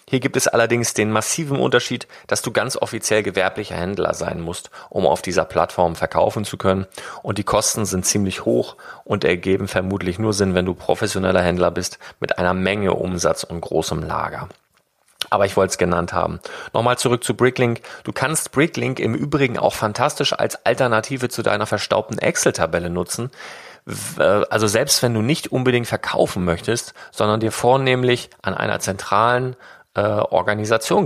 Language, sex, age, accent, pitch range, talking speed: German, male, 30-49, German, 95-125 Hz, 160 wpm